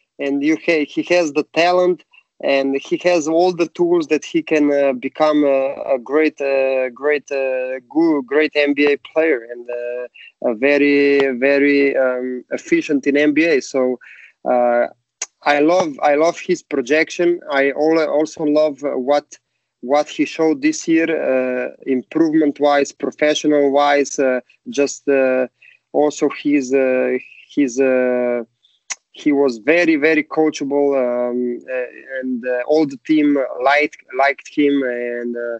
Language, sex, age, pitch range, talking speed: French, male, 20-39, 130-155 Hz, 130 wpm